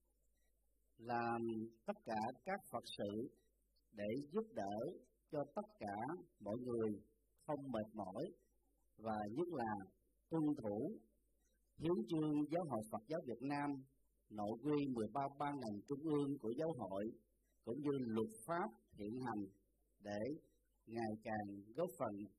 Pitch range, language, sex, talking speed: 110-150 Hz, Vietnamese, male, 135 wpm